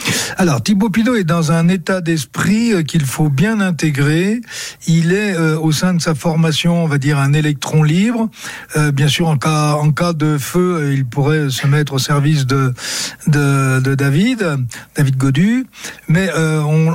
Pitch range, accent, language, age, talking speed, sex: 150-190 Hz, French, French, 60-79, 175 wpm, male